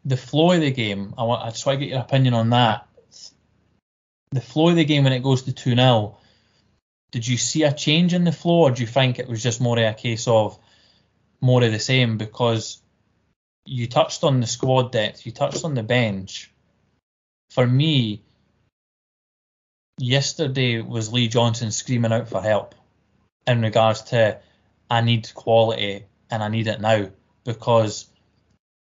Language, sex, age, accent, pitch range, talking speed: English, male, 20-39, British, 110-130 Hz, 170 wpm